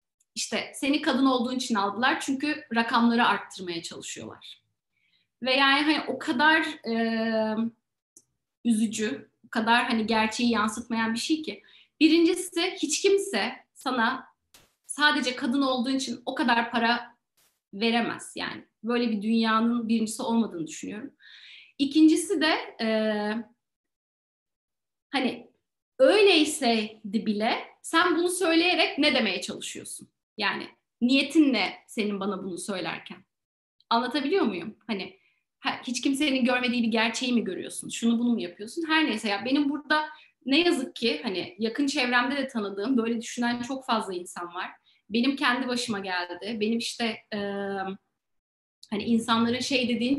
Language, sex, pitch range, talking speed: Turkish, female, 220-285 Hz, 130 wpm